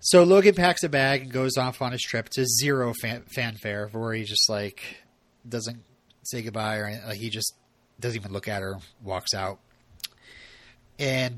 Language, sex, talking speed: English, male, 180 wpm